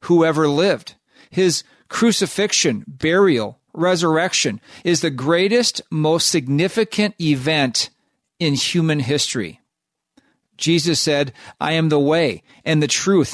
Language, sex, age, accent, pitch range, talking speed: English, male, 40-59, American, 140-185 Hz, 110 wpm